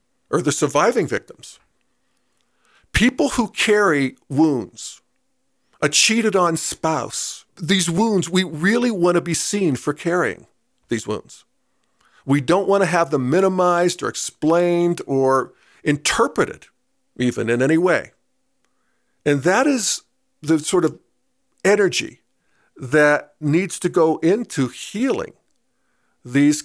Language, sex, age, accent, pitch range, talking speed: English, male, 50-69, American, 145-195 Hz, 115 wpm